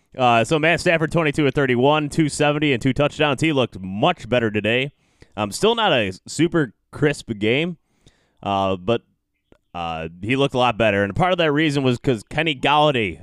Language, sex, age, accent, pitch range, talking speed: English, male, 20-39, American, 100-135 Hz, 170 wpm